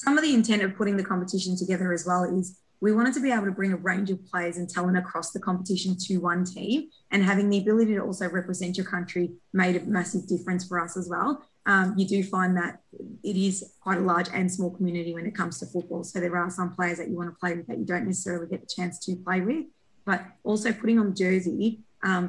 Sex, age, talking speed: female, 20-39, 250 wpm